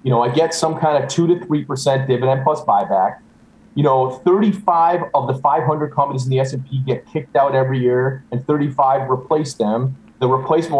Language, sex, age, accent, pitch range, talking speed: English, male, 30-49, American, 130-160 Hz, 190 wpm